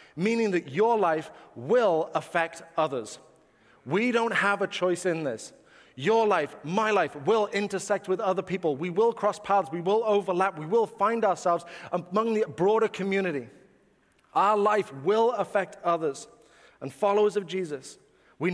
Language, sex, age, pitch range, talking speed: English, male, 30-49, 170-210 Hz, 155 wpm